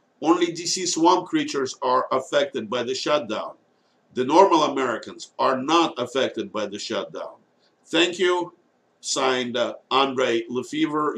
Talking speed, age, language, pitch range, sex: 125 wpm, 50-69, English, 115-185 Hz, male